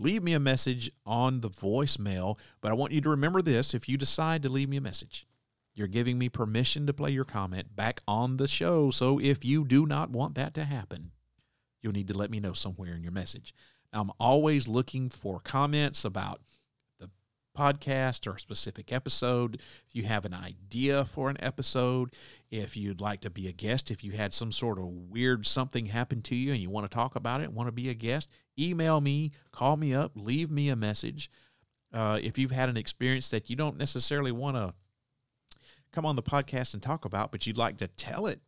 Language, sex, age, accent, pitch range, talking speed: English, male, 40-59, American, 105-140 Hz, 210 wpm